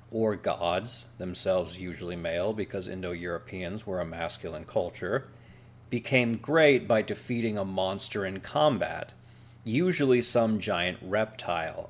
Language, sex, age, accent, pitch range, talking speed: English, male, 40-59, American, 105-120 Hz, 115 wpm